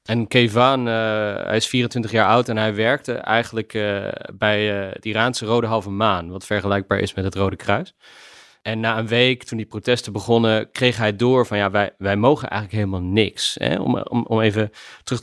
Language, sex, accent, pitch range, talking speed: Dutch, male, Dutch, 95-115 Hz, 205 wpm